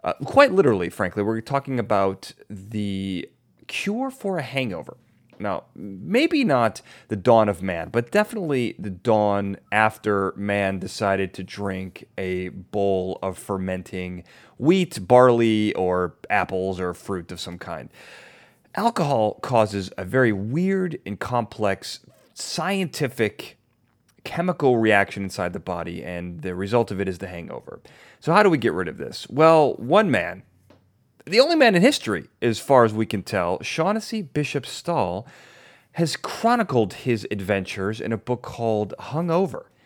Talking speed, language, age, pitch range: 145 wpm, English, 30-49, 95-130 Hz